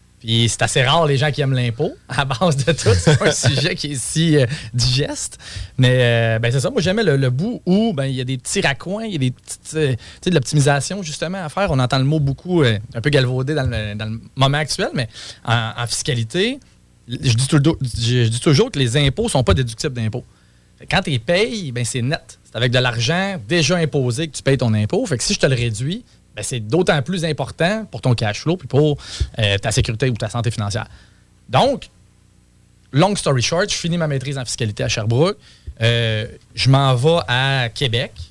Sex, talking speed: male, 225 wpm